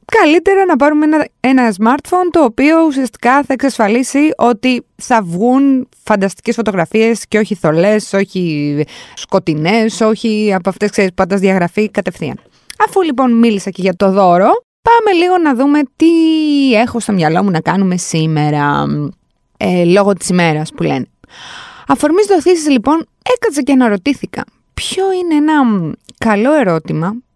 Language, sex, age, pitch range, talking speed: Greek, female, 20-39, 180-265 Hz, 140 wpm